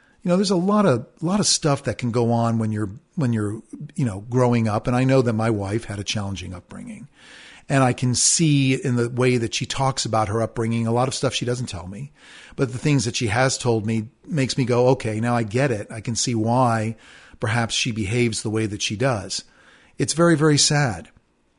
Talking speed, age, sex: 235 wpm, 40-59, male